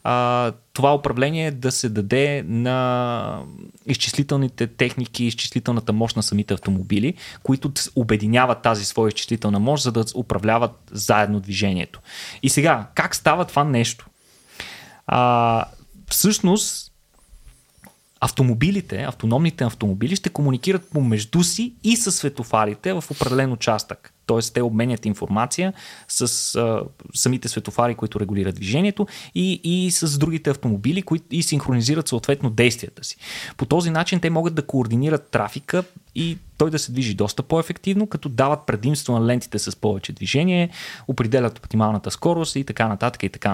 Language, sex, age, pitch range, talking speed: Bulgarian, male, 20-39, 115-155 Hz, 135 wpm